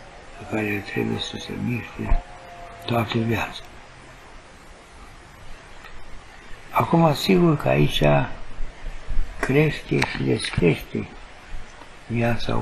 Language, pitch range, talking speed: Romanian, 100-135 Hz, 80 wpm